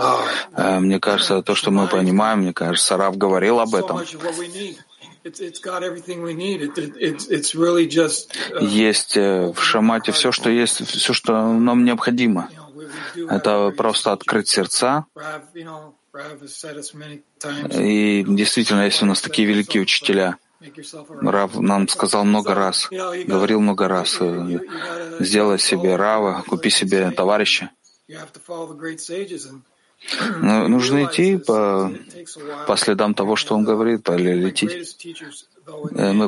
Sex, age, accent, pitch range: male, 30-49, native, 100-155 Hz